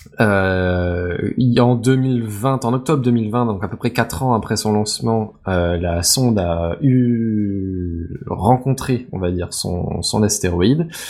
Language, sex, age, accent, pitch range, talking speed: French, male, 20-39, French, 95-120 Hz, 145 wpm